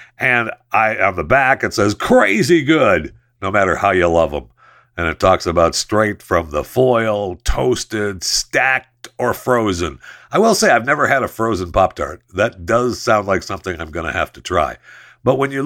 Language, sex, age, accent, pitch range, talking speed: English, male, 60-79, American, 85-120 Hz, 190 wpm